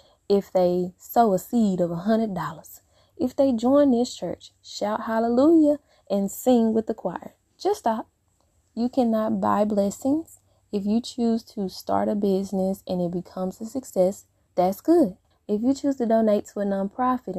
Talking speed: 170 wpm